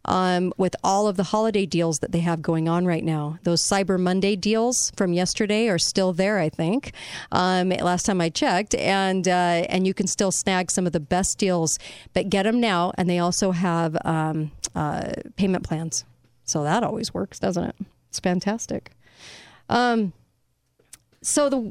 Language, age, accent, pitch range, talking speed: English, 40-59, American, 175-220 Hz, 180 wpm